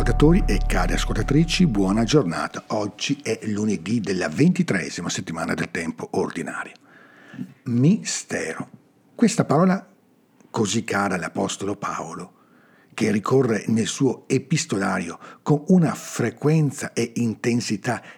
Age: 50-69